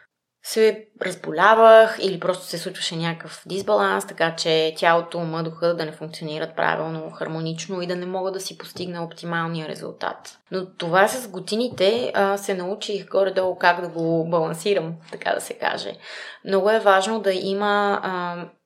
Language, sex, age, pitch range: Bulgarian, female, 20-39, 165-195 Hz